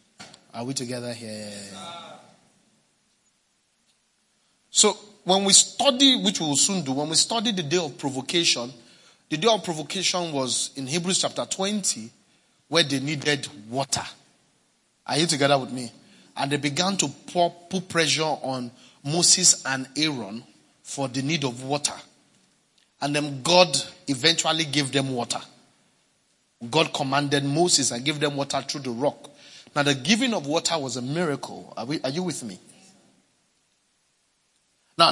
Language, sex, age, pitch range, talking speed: English, male, 30-49, 135-180 Hz, 145 wpm